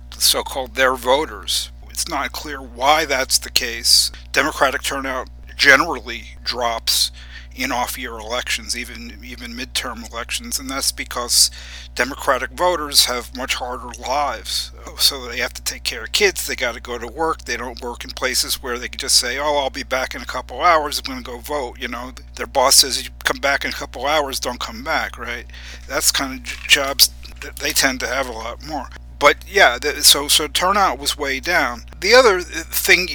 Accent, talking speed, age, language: American, 190 wpm, 50-69, English